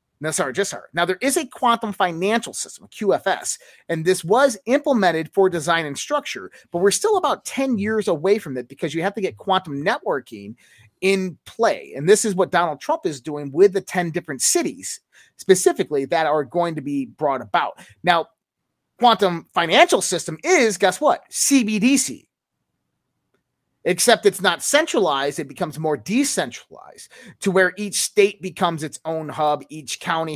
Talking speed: 170 wpm